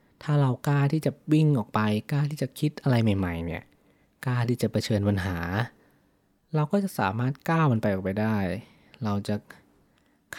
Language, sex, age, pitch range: Thai, male, 20-39, 100-125 Hz